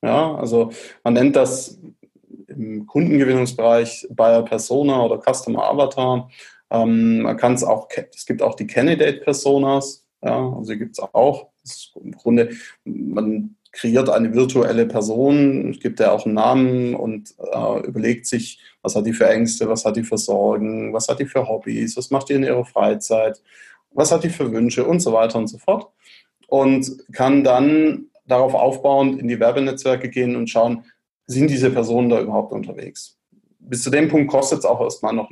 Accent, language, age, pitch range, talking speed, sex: German, German, 20-39, 115-135 Hz, 170 wpm, male